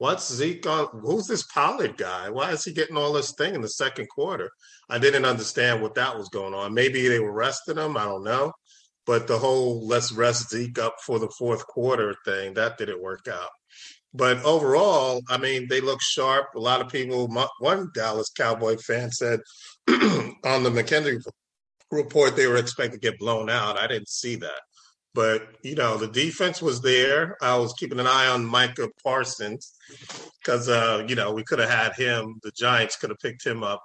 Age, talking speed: 40-59, 195 wpm